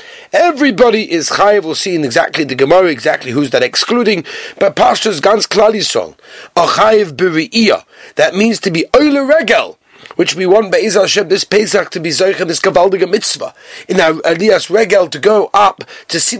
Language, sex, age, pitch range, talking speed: English, male, 30-49, 155-215 Hz, 175 wpm